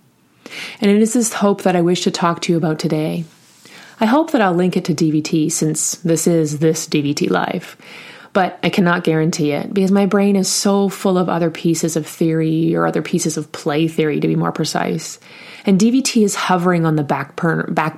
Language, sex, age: English, female, 30-49